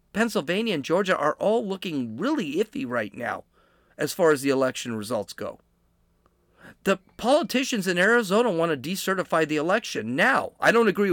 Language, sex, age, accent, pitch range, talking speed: English, male, 40-59, American, 145-215 Hz, 160 wpm